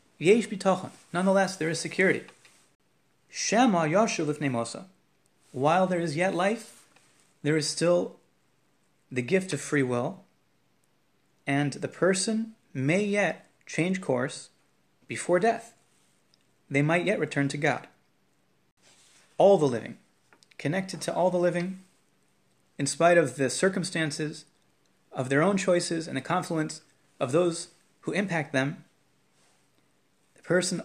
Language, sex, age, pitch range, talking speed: English, male, 30-49, 140-185 Hz, 115 wpm